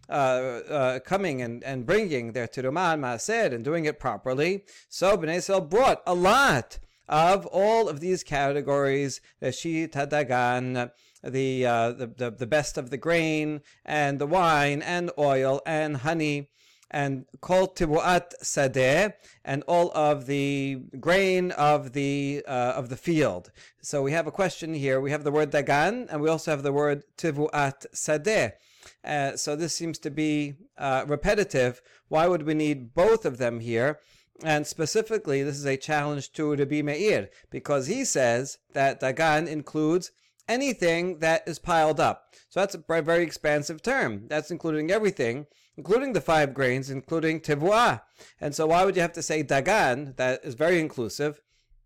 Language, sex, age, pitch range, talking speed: English, male, 40-59, 135-170 Hz, 160 wpm